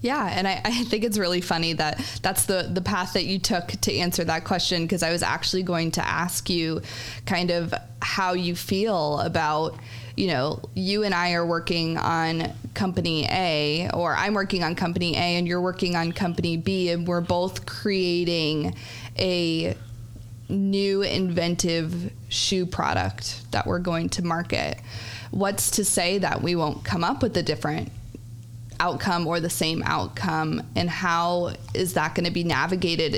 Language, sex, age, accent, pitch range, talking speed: English, female, 20-39, American, 120-180 Hz, 170 wpm